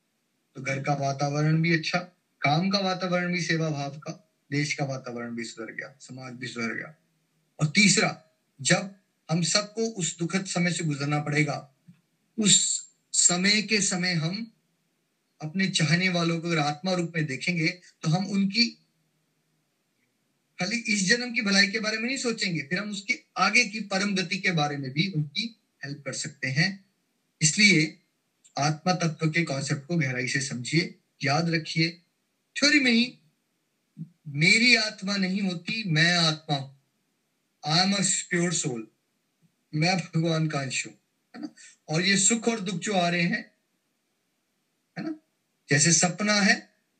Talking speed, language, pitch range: 150 wpm, Hindi, 155-200 Hz